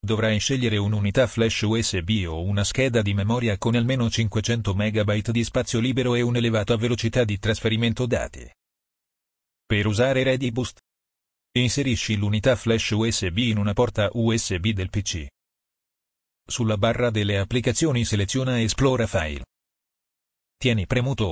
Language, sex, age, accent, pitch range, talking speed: Italian, male, 40-59, native, 100-120 Hz, 125 wpm